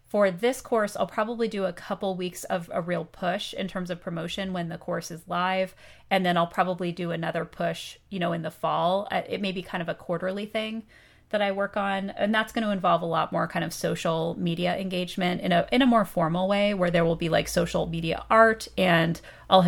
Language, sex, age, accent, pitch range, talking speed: English, female, 30-49, American, 175-205 Hz, 230 wpm